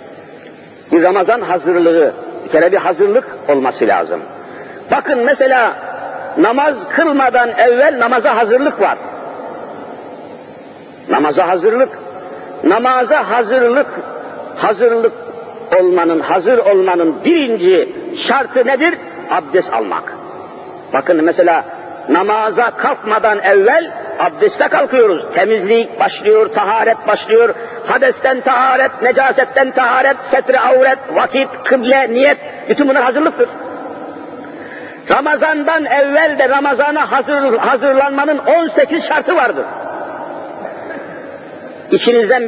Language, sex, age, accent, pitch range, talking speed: Turkish, male, 50-69, native, 235-325 Hz, 90 wpm